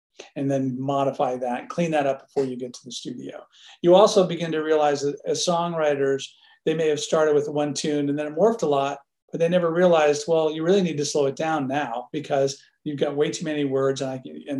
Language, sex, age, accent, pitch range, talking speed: English, male, 40-59, American, 140-175 Hz, 235 wpm